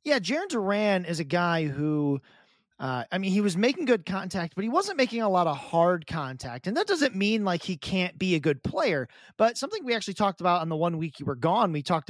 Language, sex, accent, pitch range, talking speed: English, male, American, 160-210 Hz, 250 wpm